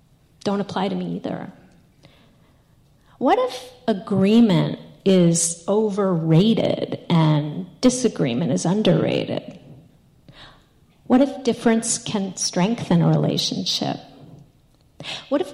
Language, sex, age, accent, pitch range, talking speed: English, female, 40-59, American, 175-235 Hz, 90 wpm